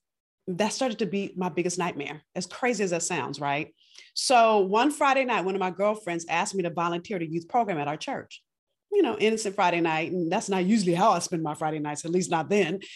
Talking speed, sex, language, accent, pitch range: 230 wpm, female, English, American, 180-245 Hz